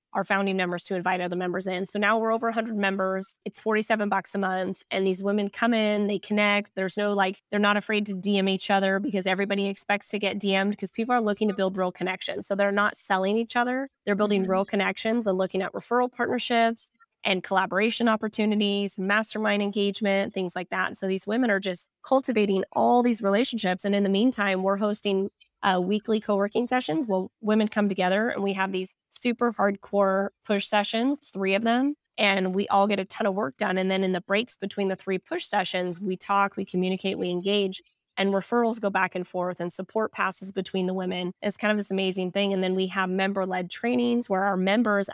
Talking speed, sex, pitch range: 210 wpm, female, 190-210 Hz